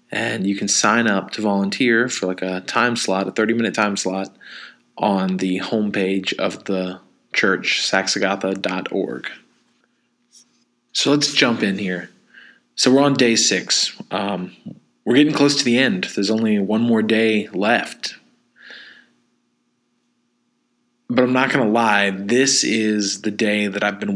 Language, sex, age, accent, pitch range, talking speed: English, male, 20-39, American, 95-120 Hz, 145 wpm